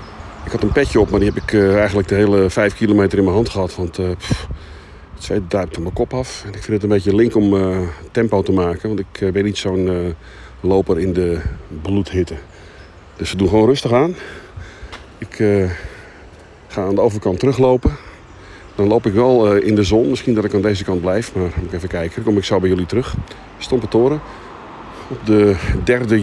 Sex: male